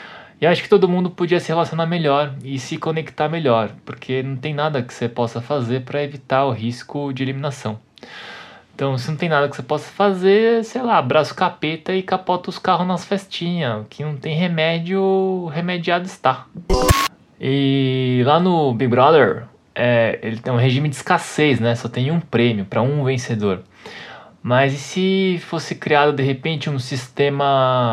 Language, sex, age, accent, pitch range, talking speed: Portuguese, male, 20-39, Brazilian, 120-160 Hz, 175 wpm